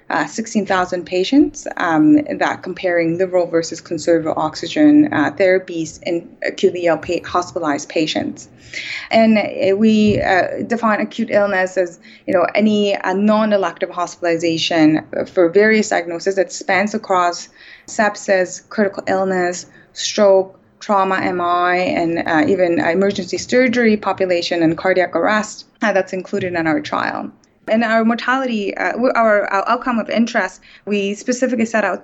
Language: English